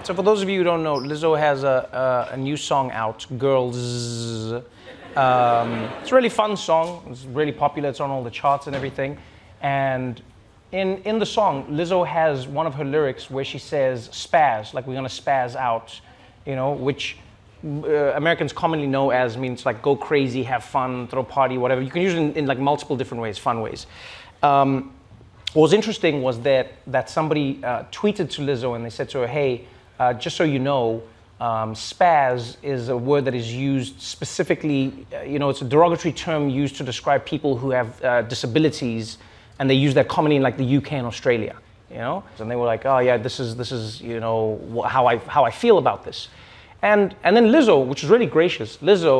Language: English